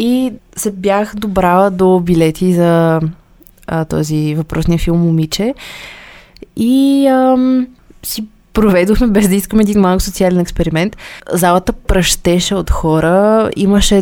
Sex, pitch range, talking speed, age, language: female, 165-210 Hz, 120 wpm, 20-39, Bulgarian